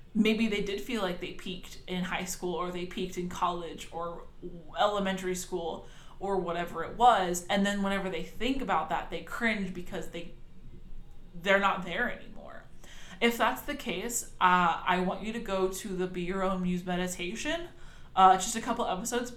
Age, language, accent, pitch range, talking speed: 20-39, English, American, 180-210 Hz, 185 wpm